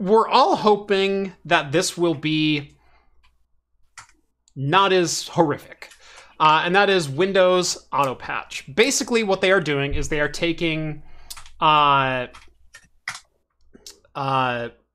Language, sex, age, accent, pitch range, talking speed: English, male, 30-49, American, 140-180 Hz, 110 wpm